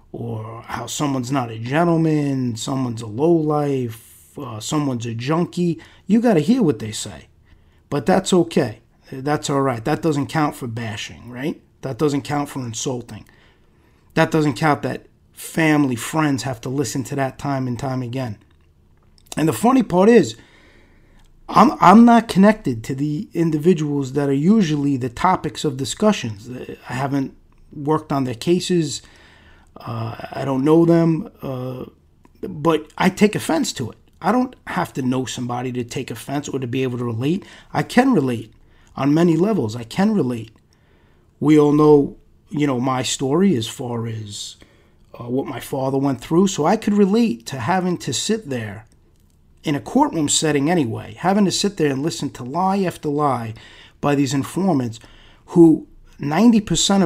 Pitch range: 120-165 Hz